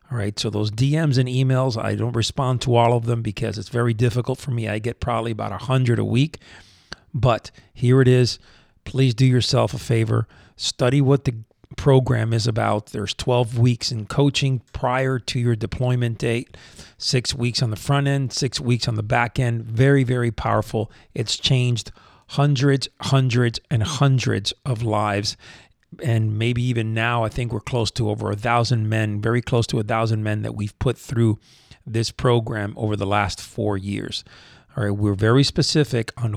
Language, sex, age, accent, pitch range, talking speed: English, male, 40-59, American, 110-130 Hz, 185 wpm